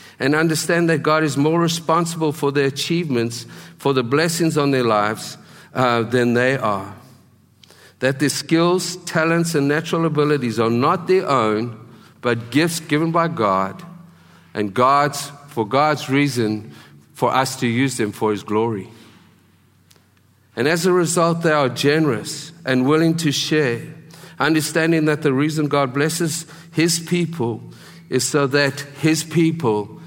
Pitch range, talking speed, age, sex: 110-155 Hz, 145 wpm, 50-69, male